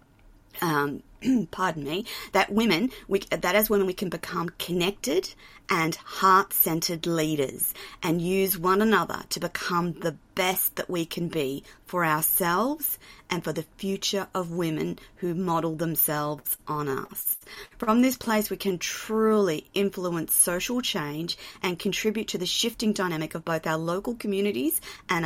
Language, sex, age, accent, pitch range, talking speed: English, female, 40-59, Australian, 165-205 Hz, 145 wpm